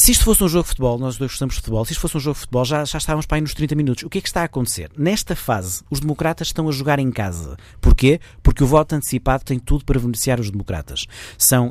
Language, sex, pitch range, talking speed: Portuguese, male, 110-145 Hz, 280 wpm